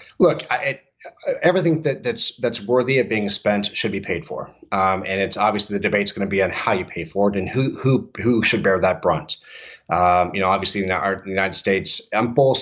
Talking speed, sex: 240 wpm, male